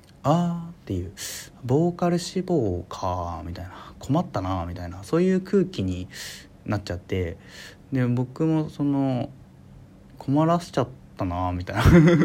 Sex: male